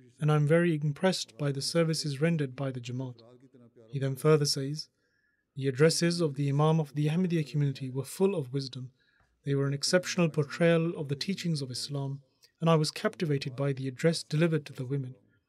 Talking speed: 195 wpm